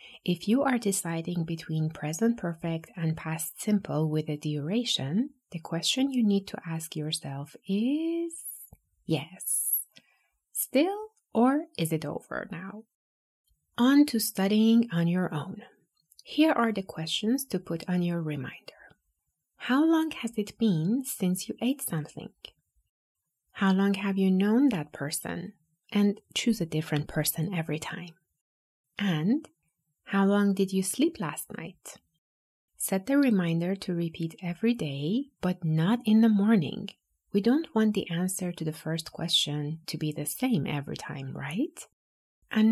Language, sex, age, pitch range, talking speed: English, female, 30-49, 160-225 Hz, 145 wpm